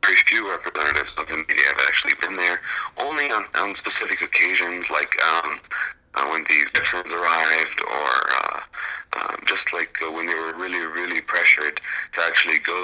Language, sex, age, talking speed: English, male, 30-49, 175 wpm